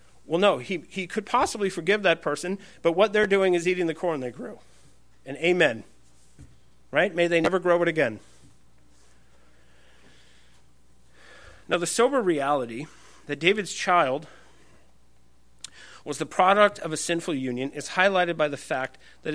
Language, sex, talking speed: English, male, 150 wpm